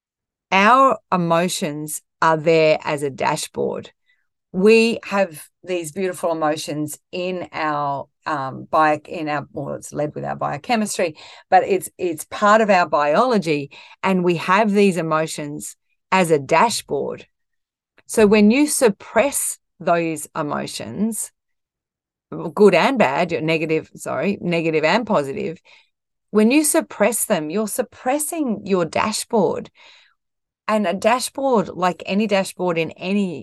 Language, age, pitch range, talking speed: English, 40-59, 160-220 Hz, 125 wpm